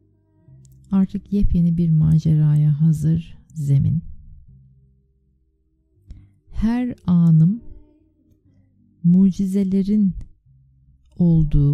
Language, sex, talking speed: Turkish, female, 50 wpm